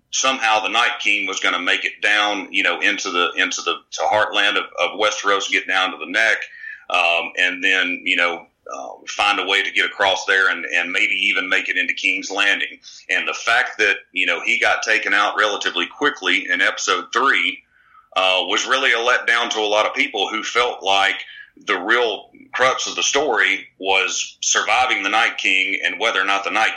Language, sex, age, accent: English, male, 40-59, American